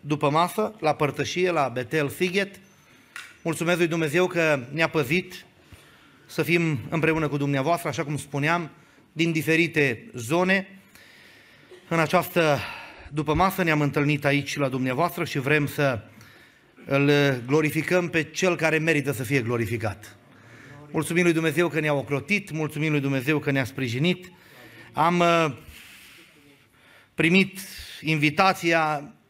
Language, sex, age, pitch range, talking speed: Romanian, male, 30-49, 135-170 Hz, 125 wpm